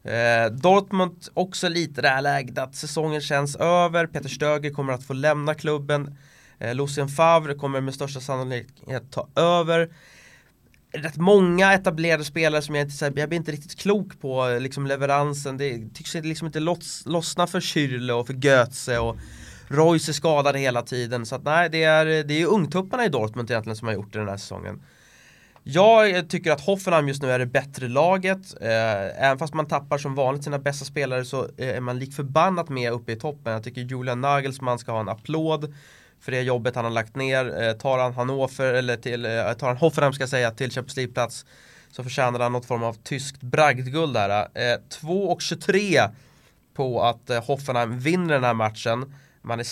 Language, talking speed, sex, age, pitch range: English, 185 wpm, male, 20-39, 120-150 Hz